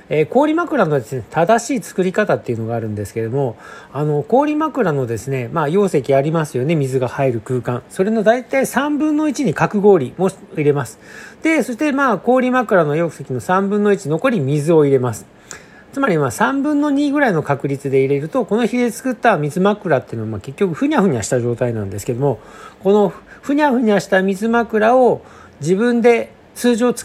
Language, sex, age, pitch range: Japanese, male, 40-59, 135-225 Hz